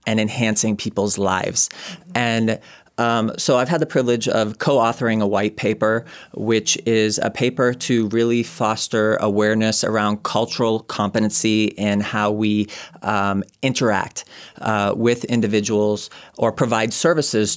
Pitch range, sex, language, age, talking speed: 105-125 Hz, male, English, 30-49, 130 wpm